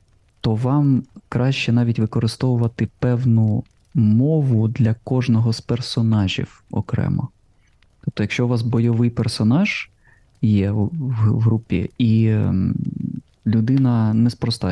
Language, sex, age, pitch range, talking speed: Ukrainian, male, 20-39, 105-125 Hz, 100 wpm